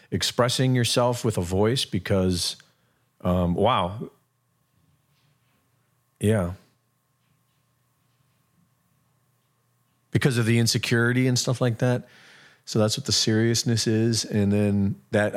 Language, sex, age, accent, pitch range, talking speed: English, male, 40-59, American, 95-120 Hz, 100 wpm